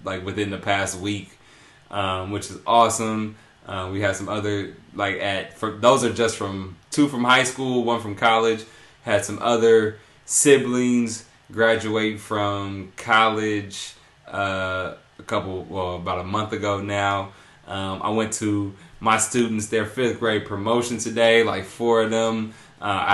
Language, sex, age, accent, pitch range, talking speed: English, male, 20-39, American, 95-115 Hz, 155 wpm